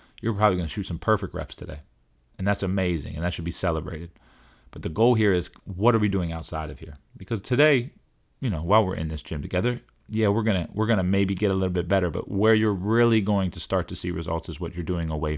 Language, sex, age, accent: English, male, 30-49, American